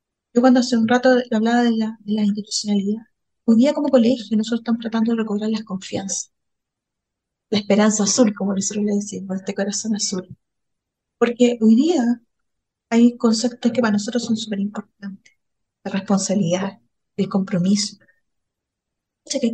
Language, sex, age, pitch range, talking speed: Spanish, female, 30-49, 195-245 Hz, 150 wpm